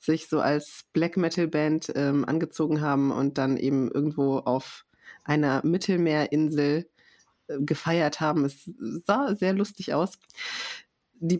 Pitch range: 155-190 Hz